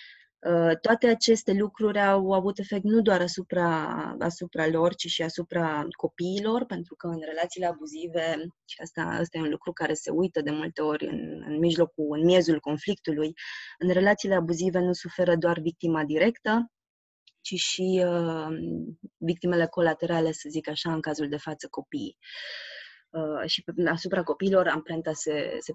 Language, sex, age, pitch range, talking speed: Romanian, female, 20-39, 160-185 Hz, 155 wpm